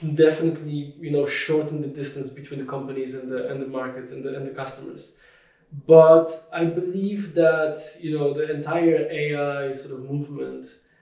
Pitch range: 135-155 Hz